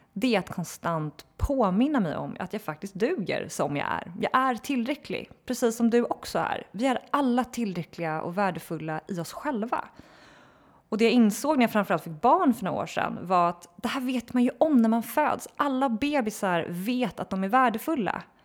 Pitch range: 185-245 Hz